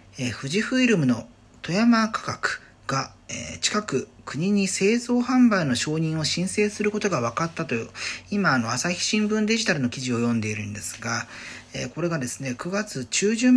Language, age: Japanese, 40-59